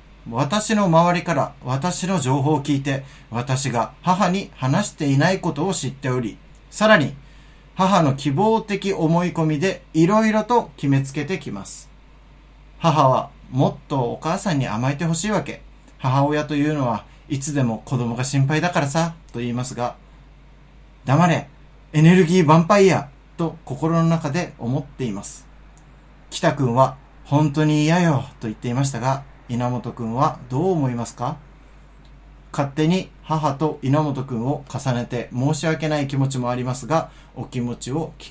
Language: Japanese